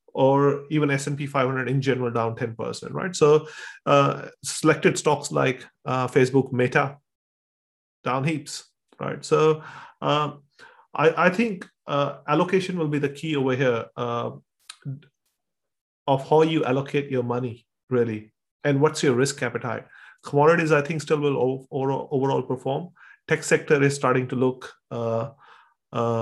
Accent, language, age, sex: Indian, English, 30-49, male